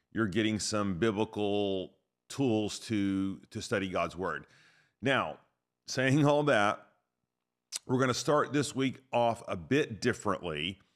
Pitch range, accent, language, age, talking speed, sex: 100-120 Hz, American, English, 40-59, 125 wpm, male